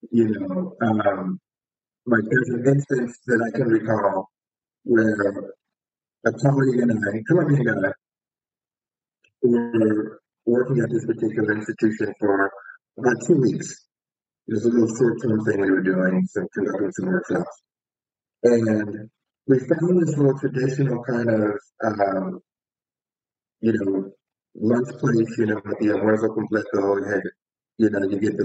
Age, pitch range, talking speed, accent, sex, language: 50-69, 105-140 Hz, 145 wpm, American, male, English